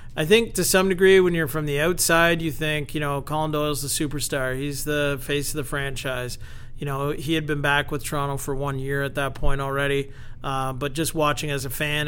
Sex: male